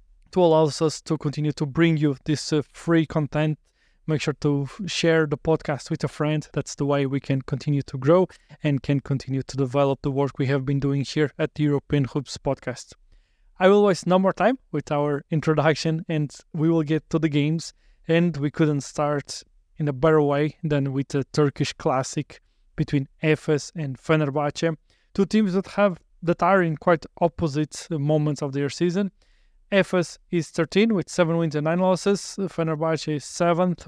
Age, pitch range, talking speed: 20-39, 145-170 Hz, 185 wpm